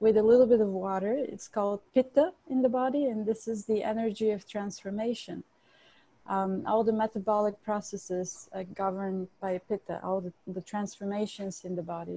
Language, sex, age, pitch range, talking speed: English, female, 30-49, 195-235 Hz, 175 wpm